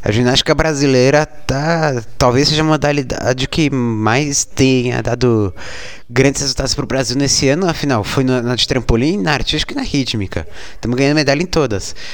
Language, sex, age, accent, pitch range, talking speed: Portuguese, male, 20-39, Brazilian, 115-140 Hz, 165 wpm